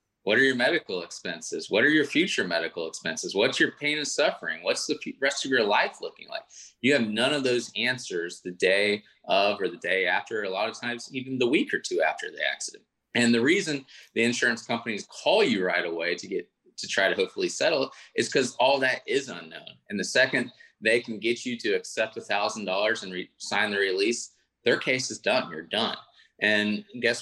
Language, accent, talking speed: English, American, 210 wpm